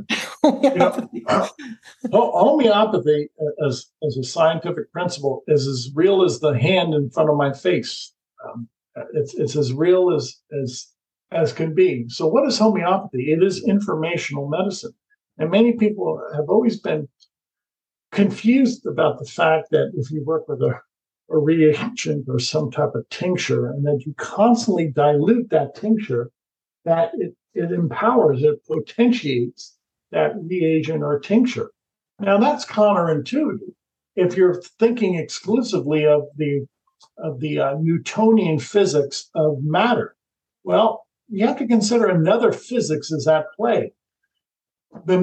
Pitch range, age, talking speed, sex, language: 150-215 Hz, 50-69, 140 wpm, male, English